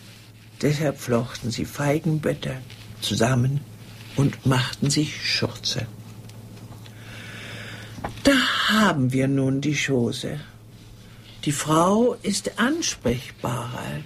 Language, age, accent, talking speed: German, 60-79, German, 80 wpm